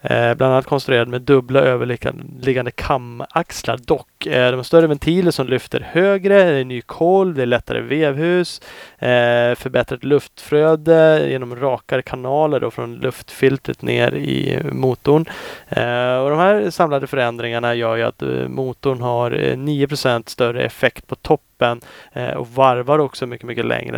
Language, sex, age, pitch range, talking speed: Swedish, male, 30-49, 120-145 Hz, 135 wpm